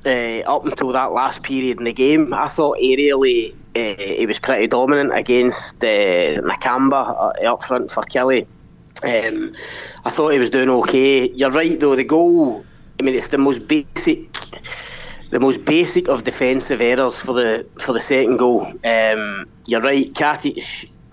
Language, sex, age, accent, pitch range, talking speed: English, male, 20-39, British, 125-150 Hz, 170 wpm